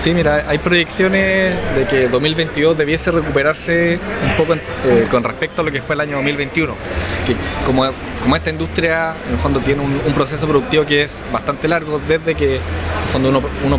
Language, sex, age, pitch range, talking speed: Spanish, male, 20-39, 115-150 Hz, 190 wpm